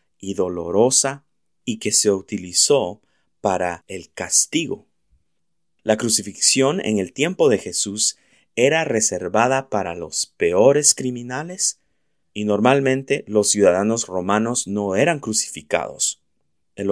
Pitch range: 100-135 Hz